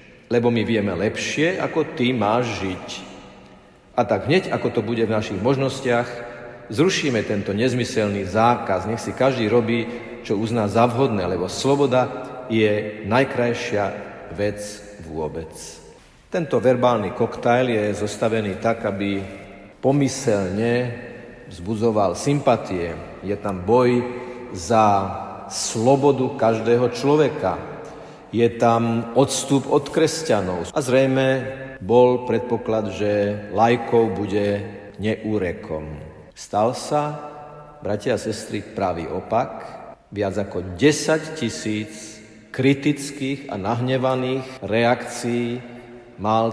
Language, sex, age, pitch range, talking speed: Slovak, male, 50-69, 105-125 Hz, 105 wpm